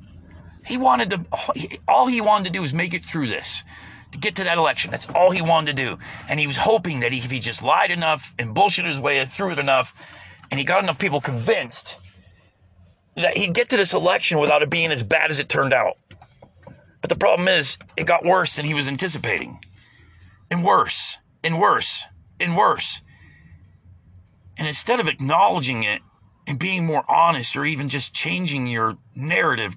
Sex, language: male, English